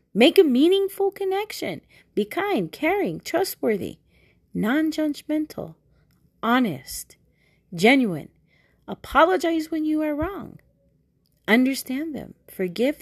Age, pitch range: 30-49, 210-300 Hz